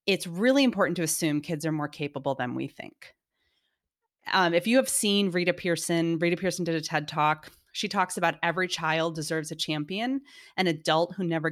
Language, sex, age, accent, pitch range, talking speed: English, female, 30-49, American, 155-190 Hz, 195 wpm